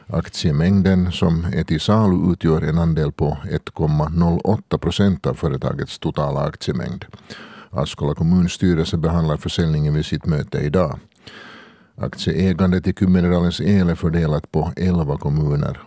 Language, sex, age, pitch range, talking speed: Swedish, male, 50-69, 80-95 Hz, 120 wpm